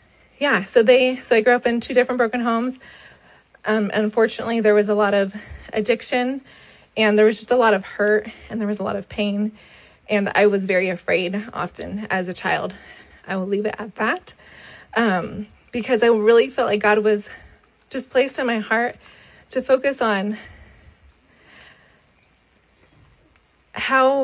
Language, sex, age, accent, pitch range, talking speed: English, female, 20-39, American, 210-240 Hz, 165 wpm